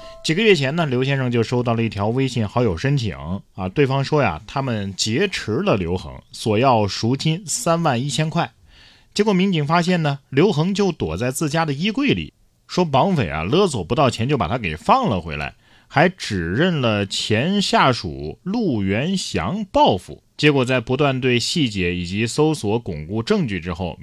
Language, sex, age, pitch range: Chinese, male, 30-49, 95-135 Hz